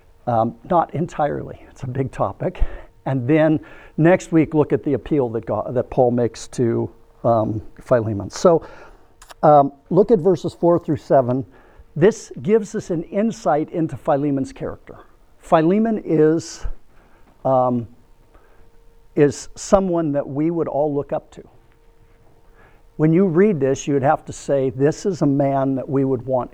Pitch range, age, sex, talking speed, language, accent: 125-170 Hz, 60-79, male, 155 wpm, English, American